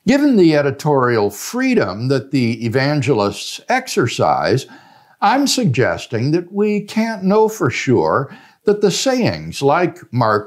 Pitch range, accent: 130-205 Hz, American